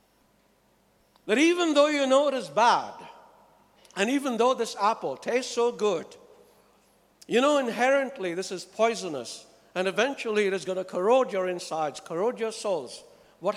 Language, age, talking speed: English, 60-79, 155 wpm